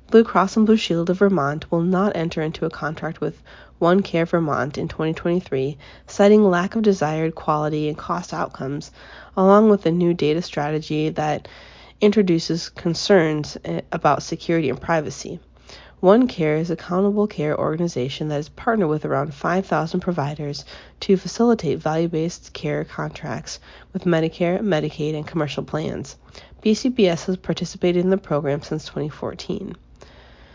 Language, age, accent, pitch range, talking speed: English, 30-49, American, 155-185 Hz, 140 wpm